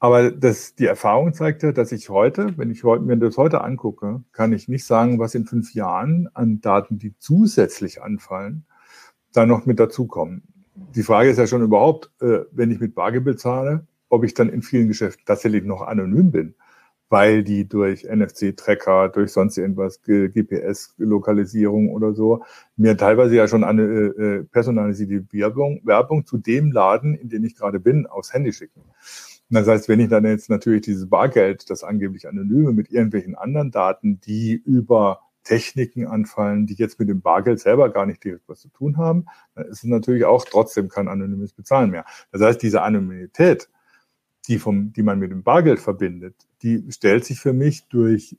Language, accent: German, German